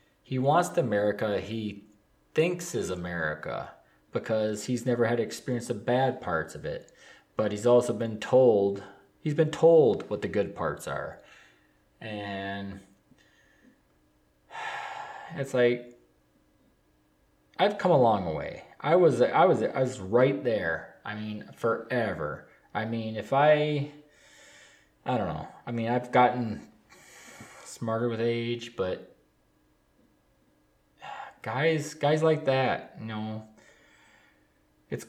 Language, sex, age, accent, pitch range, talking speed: English, male, 20-39, American, 105-150 Hz, 125 wpm